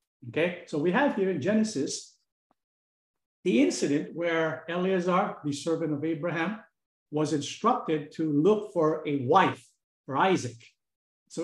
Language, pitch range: English, 145-195 Hz